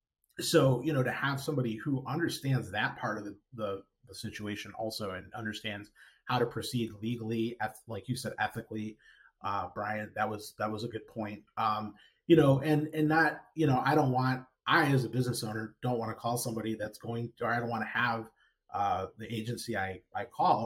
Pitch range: 110-130 Hz